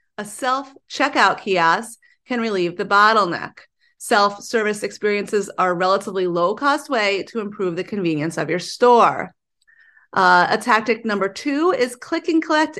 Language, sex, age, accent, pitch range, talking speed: English, female, 30-49, American, 185-240 Hz, 135 wpm